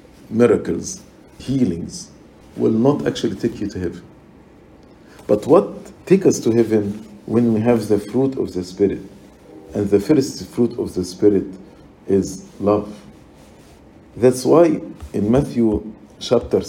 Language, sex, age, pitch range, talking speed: English, male, 50-69, 110-175 Hz, 135 wpm